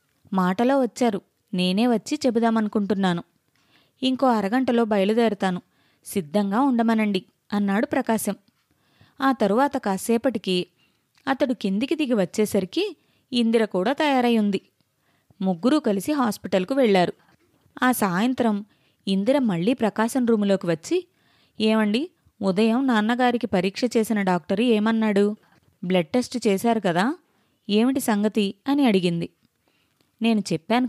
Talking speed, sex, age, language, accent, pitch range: 100 wpm, female, 20-39, Telugu, native, 195-245 Hz